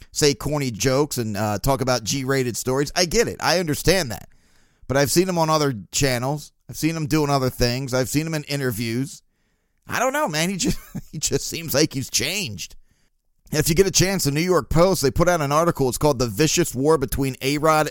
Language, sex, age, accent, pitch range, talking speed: English, male, 40-59, American, 125-155 Hz, 225 wpm